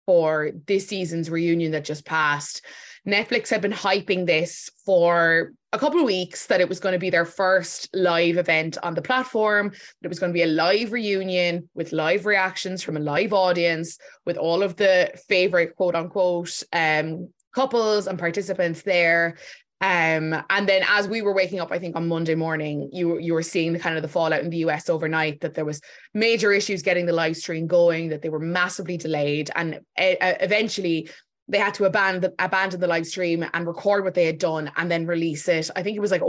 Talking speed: 205 wpm